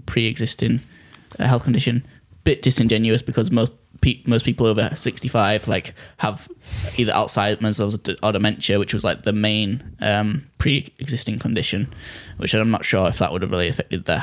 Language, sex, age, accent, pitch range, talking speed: English, male, 10-29, British, 110-130 Hz, 150 wpm